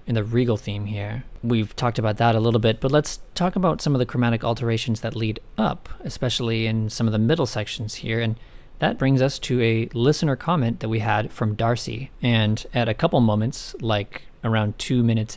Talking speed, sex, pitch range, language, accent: 210 wpm, male, 110-130 Hz, English, American